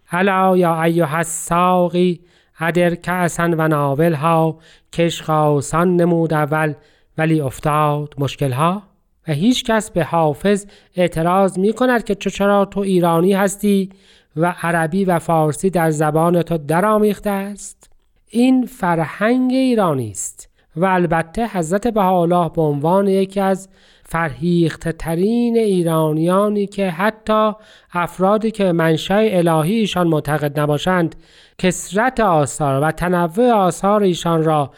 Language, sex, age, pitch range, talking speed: Persian, male, 40-59, 160-200 Hz, 115 wpm